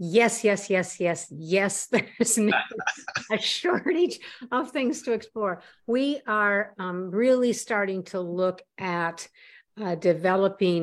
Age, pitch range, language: 50-69, 150-195 Hz, English